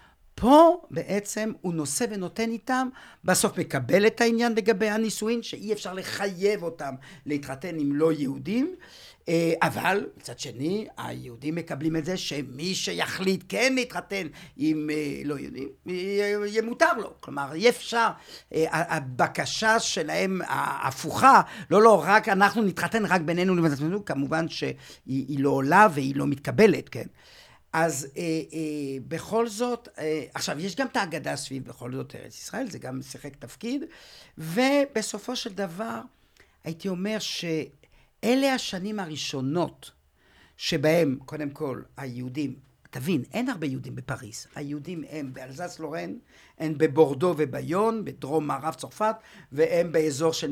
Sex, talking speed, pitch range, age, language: male, 125 wpm, 145-210 Hz, 50-69, Hebrew